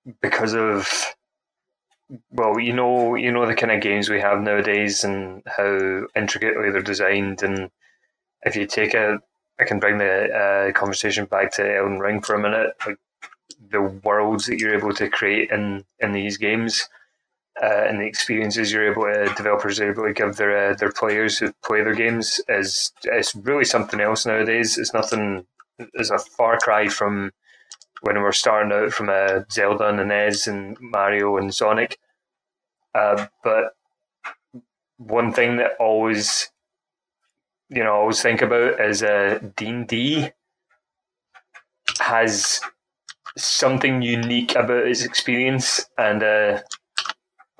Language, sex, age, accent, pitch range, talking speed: English, male, 20-39, British, 100-115 Hz, 155 wpm